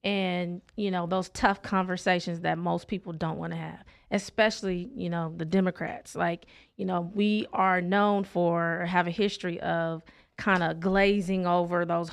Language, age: English, 30-49